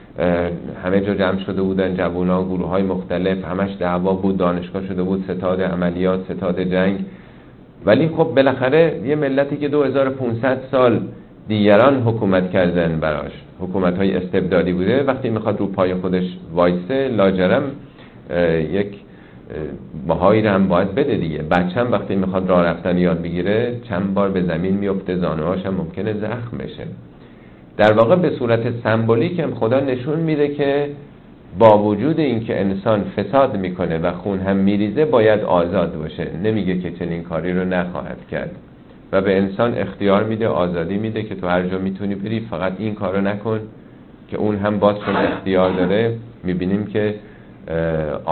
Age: 50-69